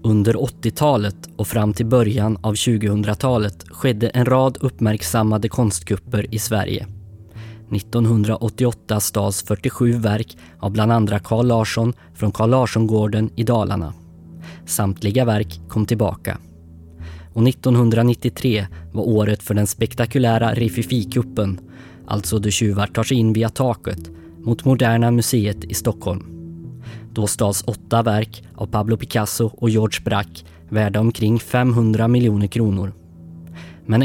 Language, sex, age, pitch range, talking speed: Swedish, male, 20-39, 100-115 Hz, 125 wpm